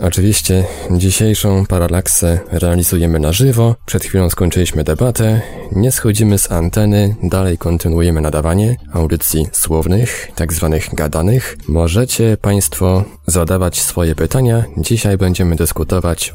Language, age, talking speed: Polish, 20-39, 110 wpm